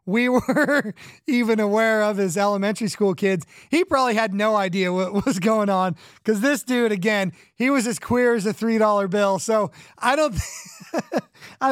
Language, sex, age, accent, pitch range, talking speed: English, male, 30-49, American, 190-245 Hz, 185 wpm